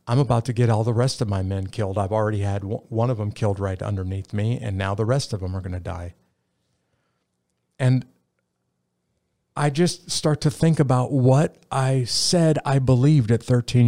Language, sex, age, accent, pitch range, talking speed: English, male, 50-69, American, 100-130 Hz, 195 wpm